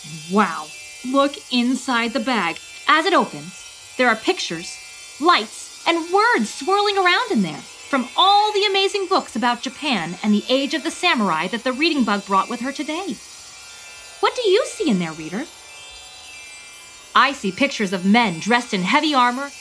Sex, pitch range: female, 215-345 Hz